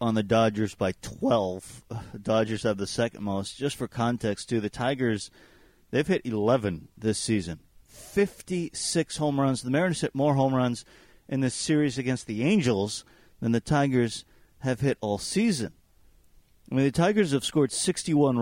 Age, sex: 40-59, male